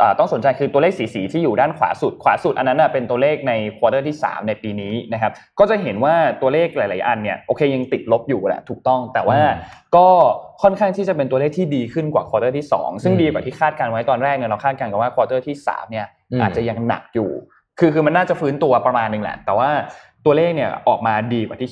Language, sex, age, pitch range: Thai, male, 20-39, 115-170 Hz